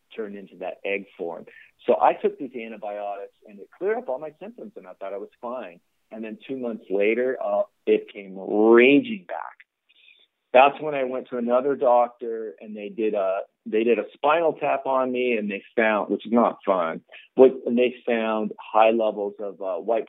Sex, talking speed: male, 200 wpm